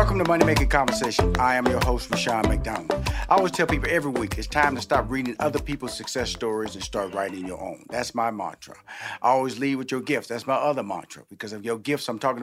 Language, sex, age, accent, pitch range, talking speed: English, male, 50-69, American, 115-145 Hz, 240 wpm